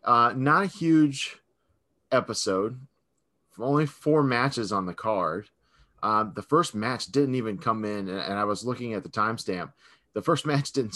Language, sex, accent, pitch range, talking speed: English, male, American, 95-120 Hz, 170 wpm